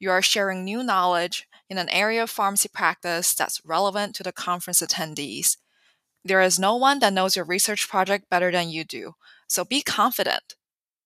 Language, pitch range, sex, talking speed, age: English, 175-225 Hz, female, 180 wpm, 20-39